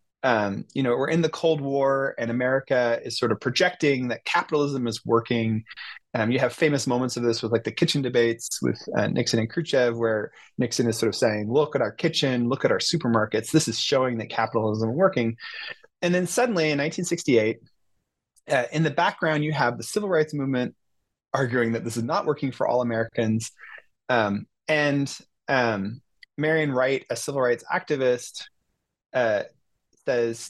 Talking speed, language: 180 wpm, English